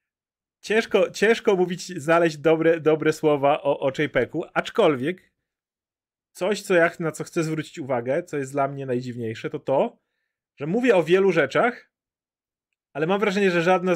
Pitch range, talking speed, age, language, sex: 140-175 Hz, 145 wpm, 30-49, Polish, male